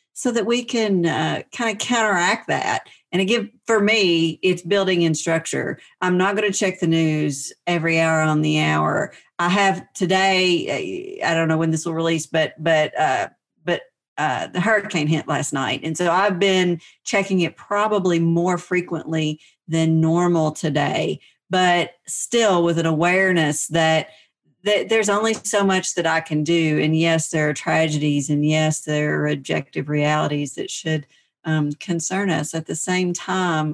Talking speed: 165 wpm